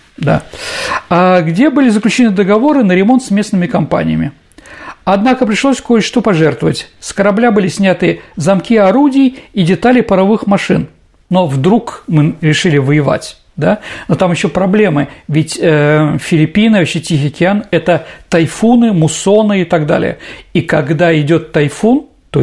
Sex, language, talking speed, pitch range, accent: male, Russian, 135 wpm, 165-220 Hz, native